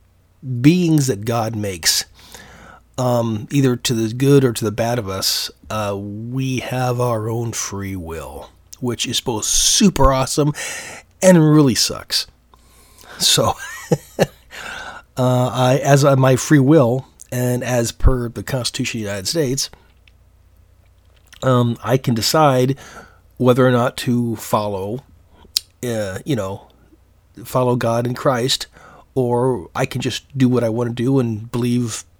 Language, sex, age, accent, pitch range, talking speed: English, male, 40-59, American, 100-135 Hz, 140 wpm